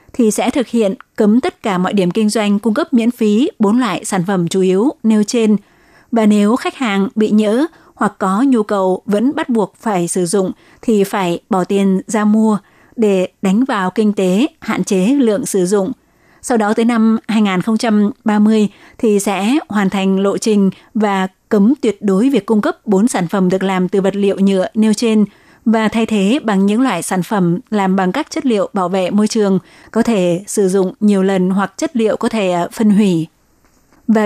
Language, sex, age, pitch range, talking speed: Vietnamese, female, 20-39, 195-230 Hz, 200 wpm